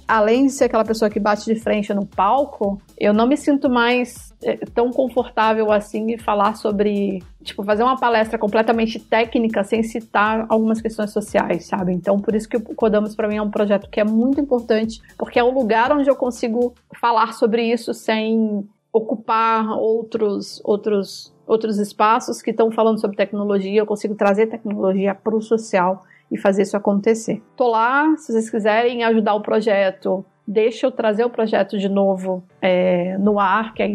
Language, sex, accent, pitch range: Portuguese, female, Brazilian, 205-240 Hz